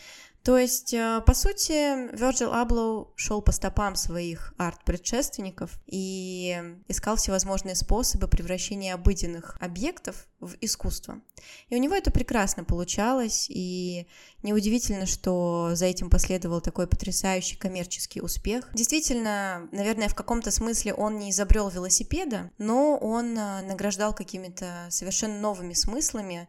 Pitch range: 180-230 Hz